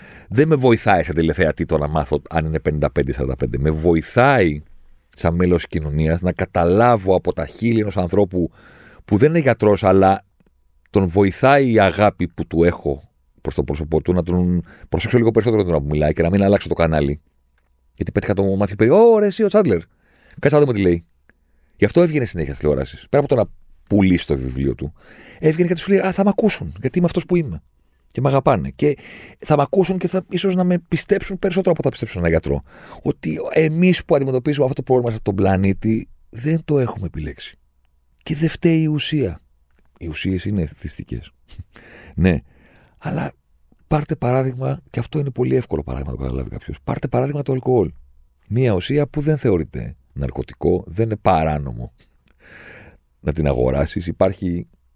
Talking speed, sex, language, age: 185 wpm, male, Greek, 40-59